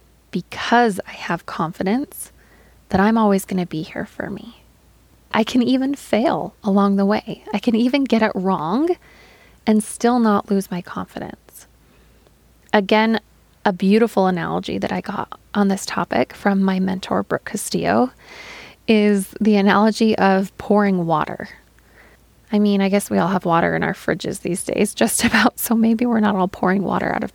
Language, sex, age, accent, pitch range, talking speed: English, female, 20-39, American, 190-225 Hz, 170 wpm